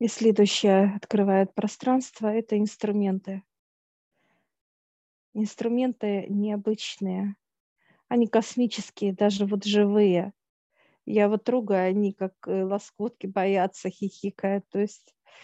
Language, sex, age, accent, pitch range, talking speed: Russian, female, 40-59, native, 195-210 Hz, 90 wpm